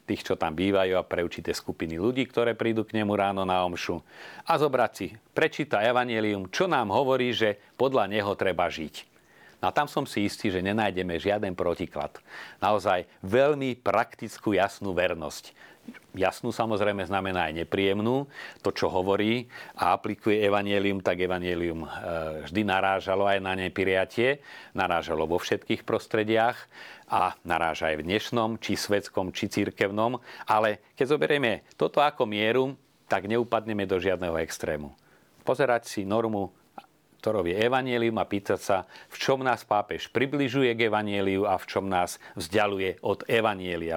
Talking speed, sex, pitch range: 145 wpm, male, 95-110 Hz